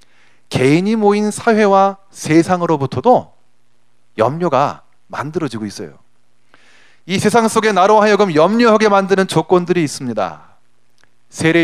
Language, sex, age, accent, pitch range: Korean, male, 30-49, native, 140-225 Hz